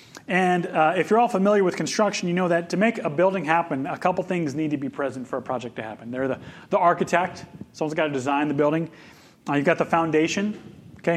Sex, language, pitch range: male, English, 145-195 Hz